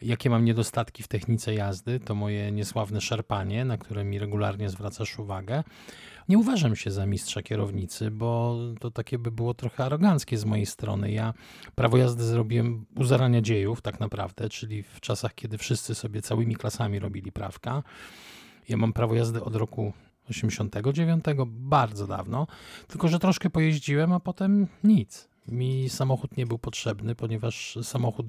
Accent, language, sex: native, Polish, male